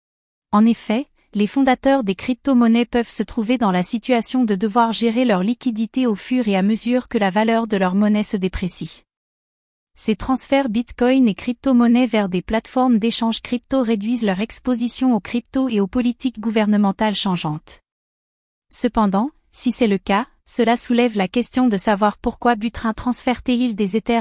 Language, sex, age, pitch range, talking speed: French, female, 30-49, 210-245 Hz, 165 wpm